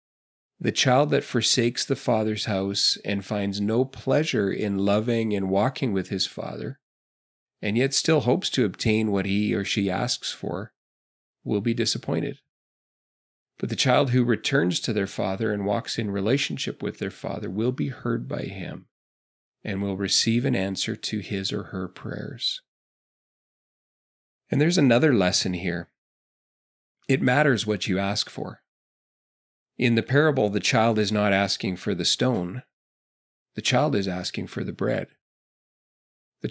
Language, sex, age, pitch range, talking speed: English, male, 40-59, 100-125 Hz, 155 wpm